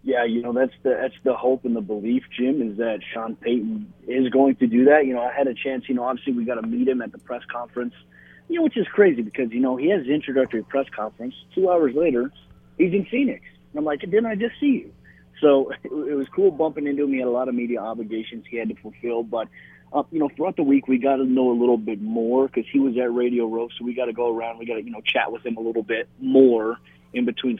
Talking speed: 275 wpm